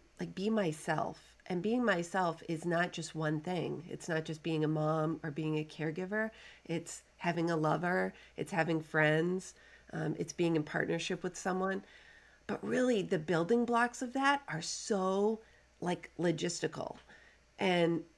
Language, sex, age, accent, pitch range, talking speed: English, female, 40-59, American, 160-210 Hz, 155 wpm